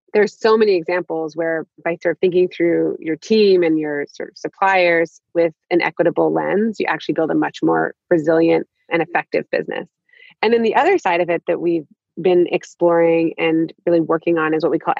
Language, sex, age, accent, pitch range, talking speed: English, female, 30-49, American, 165-195 Hz, 205 wpm